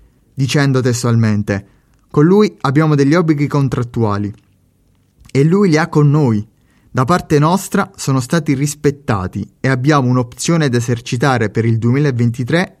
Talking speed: 130 wpm